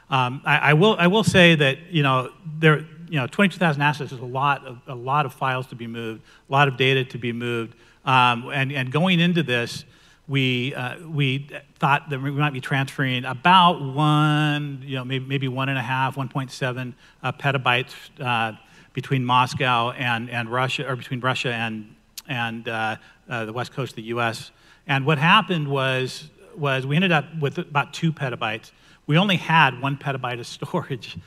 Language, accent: English, American